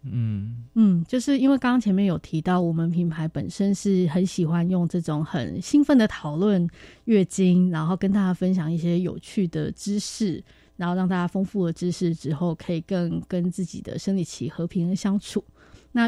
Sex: female